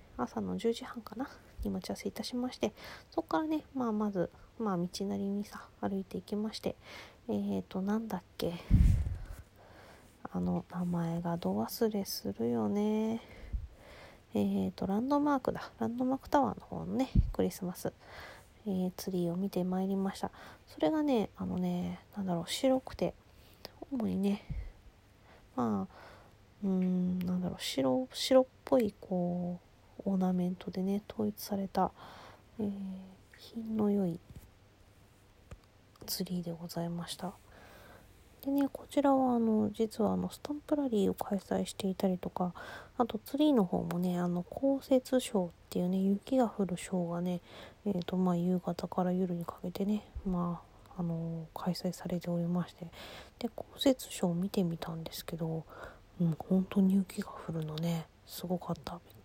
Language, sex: Japanese, female